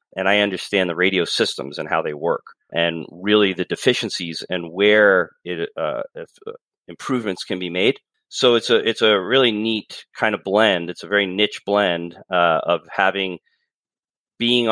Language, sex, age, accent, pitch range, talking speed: English, male, 30-49, American, 85-100 Hz, 165 wpm